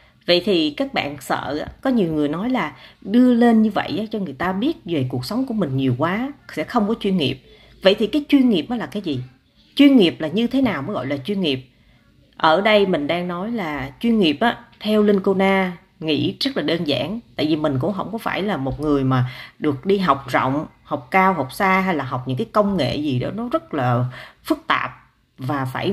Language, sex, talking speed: Vietnamese, female, 235 wpm